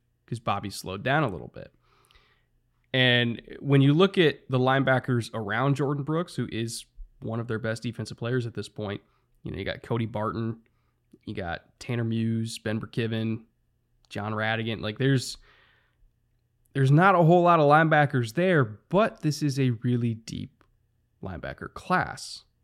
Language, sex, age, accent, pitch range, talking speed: English, male, 20-39, American, 115-135 Hz, 160 wpm